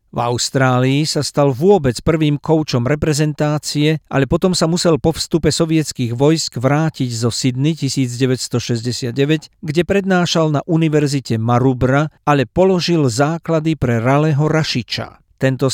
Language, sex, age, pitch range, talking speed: Slovak, male, 50-69, 130-155 Hz, 120 wpm